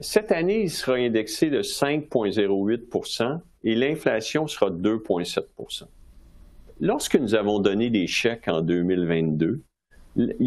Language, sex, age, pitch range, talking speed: French, male, 50-69, 95-150 Hz, 115 wpm